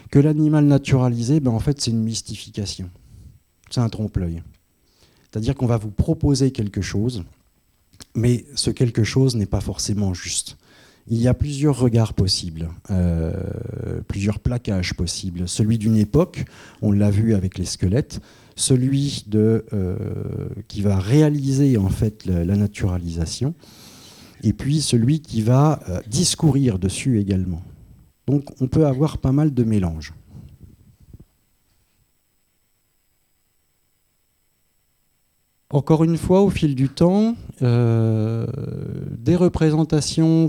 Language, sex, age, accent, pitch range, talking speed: French, male, 50-69, French, 100-135 Hz, 130 wpm